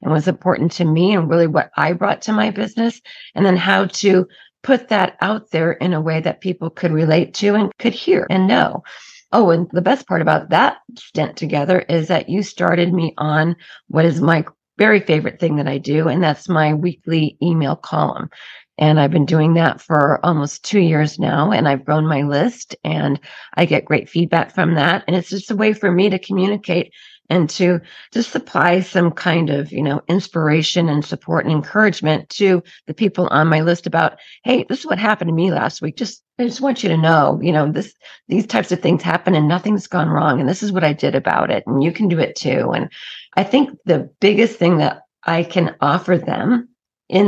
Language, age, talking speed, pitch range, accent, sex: English, 40-59, 215 wpm, 155-195 Hz, American, female